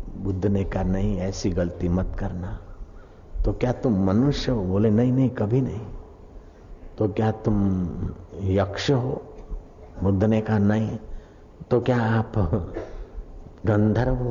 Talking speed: 120 wpm